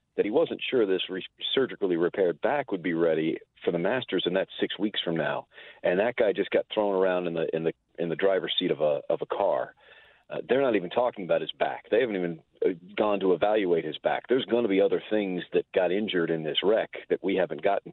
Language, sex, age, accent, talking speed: English, male, 40-59, American, 245 wpm